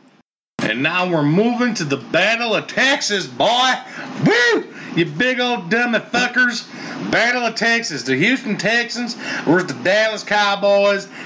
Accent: American